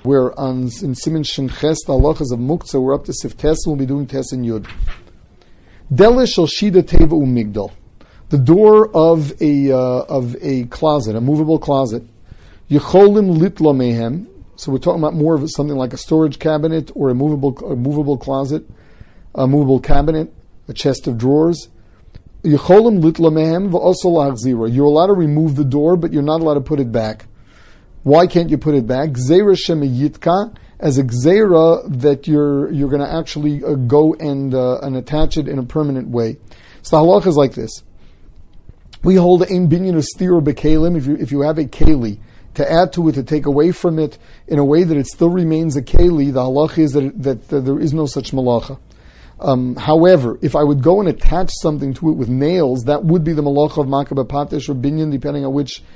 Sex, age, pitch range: male, 50-69, 130-160 Hz